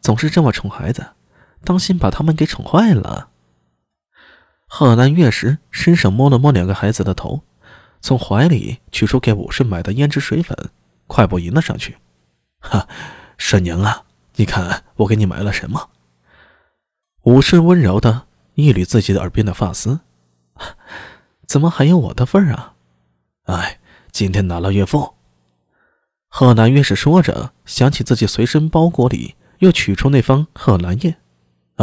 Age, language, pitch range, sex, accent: 20-39, Chinese, 90-140 Hz, male, native